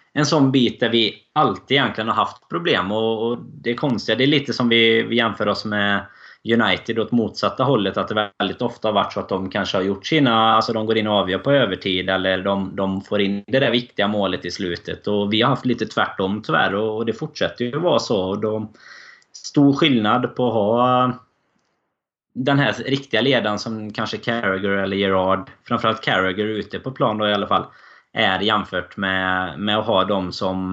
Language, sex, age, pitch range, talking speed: Swedish, male, 20-39, 100-120 Hz, 205 wpm